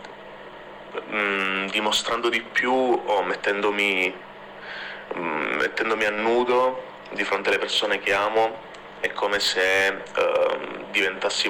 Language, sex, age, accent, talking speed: Italian, male, 30-49, native, 115 wpm